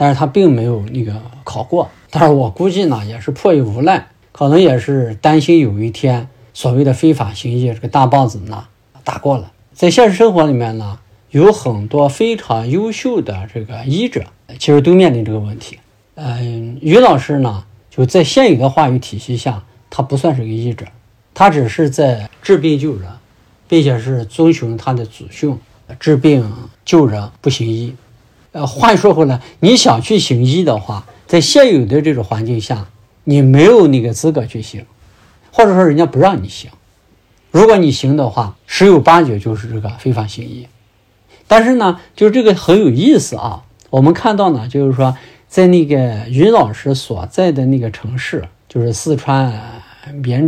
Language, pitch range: Chinese, 110-155 Hz